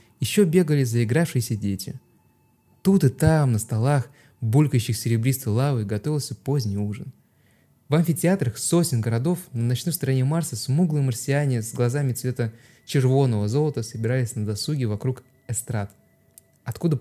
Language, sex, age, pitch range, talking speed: Russian, male, 20-39, 110-140 Hz, 125 wpm